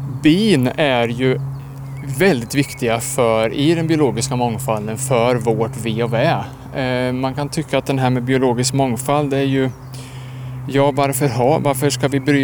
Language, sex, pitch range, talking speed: Swedish, male, 115-135 Hz, 160 wpm